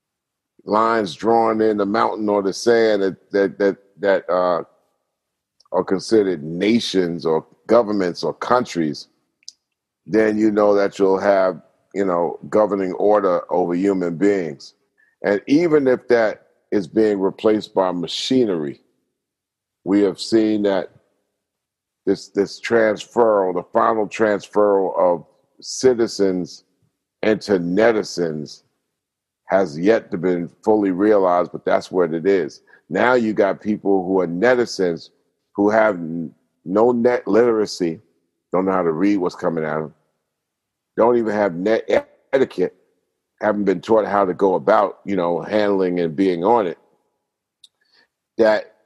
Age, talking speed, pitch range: 50-69, 130 wpm, 90-110 Hz